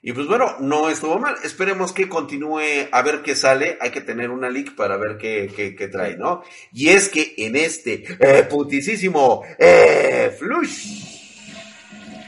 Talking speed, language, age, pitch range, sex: 165 wpm, Spanish, 40-59, 140-205 Hz, male